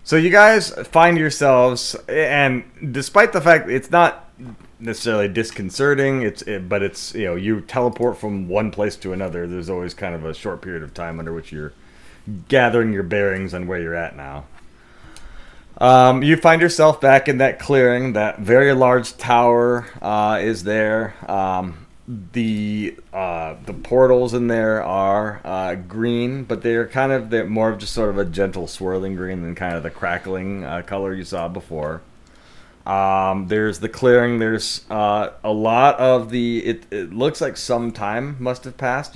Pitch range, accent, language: 95-125 Hz, American, English